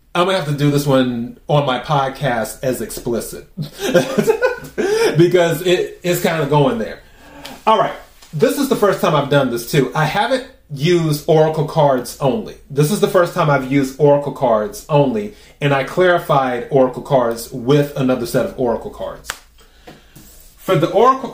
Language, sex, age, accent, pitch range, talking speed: English, male, 30-49, American, 130-175 Hz, 170 wpm